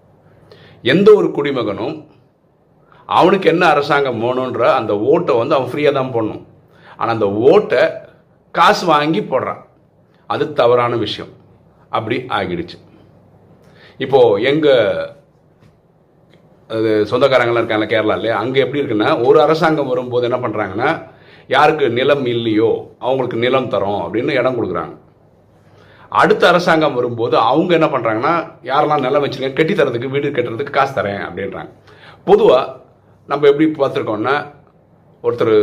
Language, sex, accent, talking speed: Tamil, male, native, 115 wpm